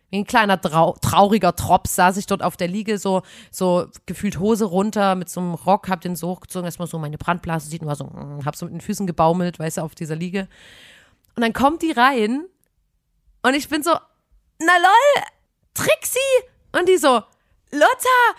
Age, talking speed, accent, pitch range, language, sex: 30-49, 190 wpm, German, 185-270 Hz, German, female